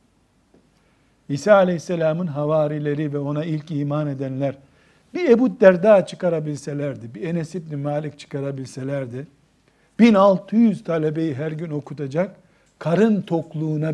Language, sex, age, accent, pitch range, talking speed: Turkish, male, 60-79, native, 150-200 Hz, 105 wpm